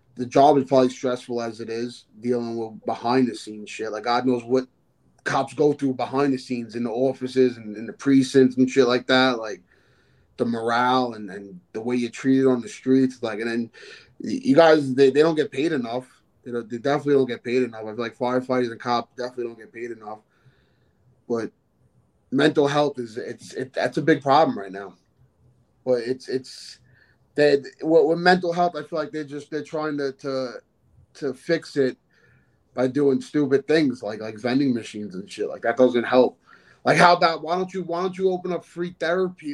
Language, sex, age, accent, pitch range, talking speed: English, male, 20-39, American, 125-155 Hz, 200 wpm